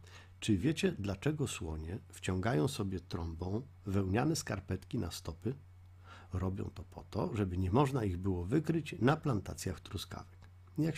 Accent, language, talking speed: native, Polish, 135 wpm